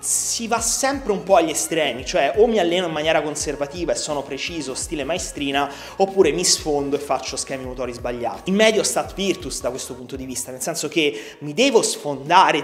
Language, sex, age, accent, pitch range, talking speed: Italian, male, 30-49, native, 140-190 Hz, 200 wpm